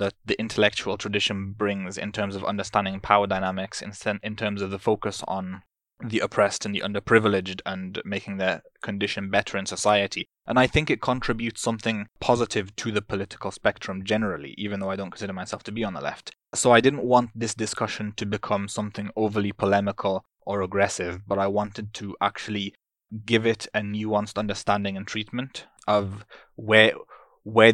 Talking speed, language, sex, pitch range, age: 175 wpm, English, male, 100-110 Hz, 20-39